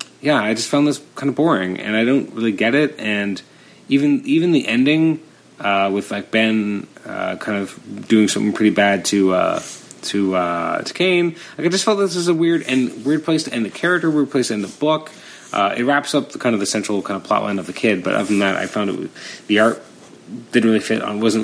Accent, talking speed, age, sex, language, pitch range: American, 240 wpm, 30-49, male, English, 105-135 Hz